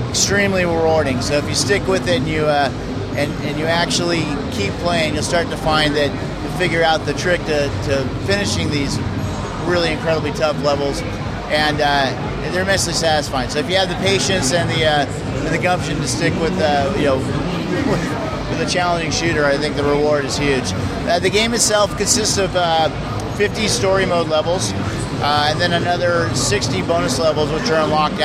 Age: 40-59